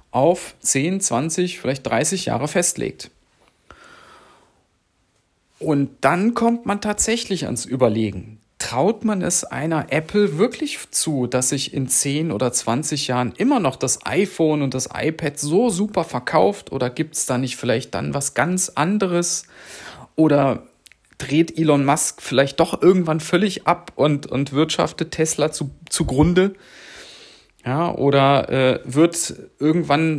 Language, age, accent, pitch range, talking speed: German, 40-59, German, 135-175 Hz, 135 wpm